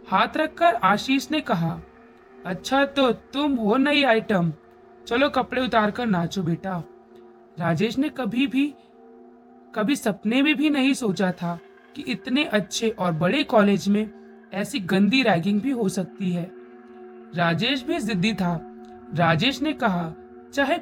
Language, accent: Hindi, native